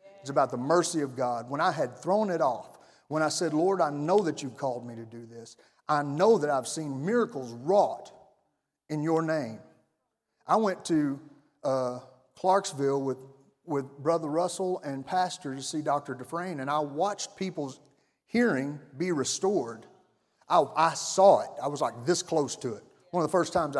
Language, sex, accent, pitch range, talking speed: English, male, American, 125-160 Hz, 185 wpm